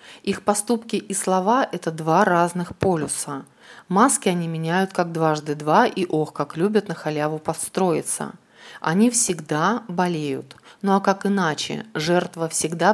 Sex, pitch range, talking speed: female, 165-215 Hz, 140 wpm